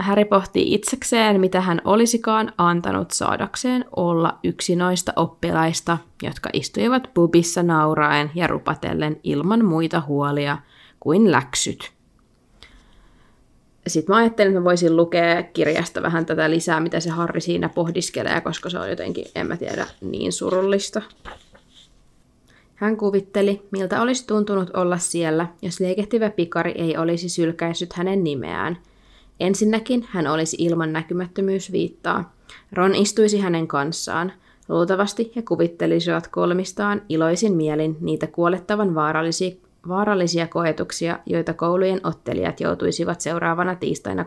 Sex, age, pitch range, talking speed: female, 20-39, 165-200 Hz, 115 wpm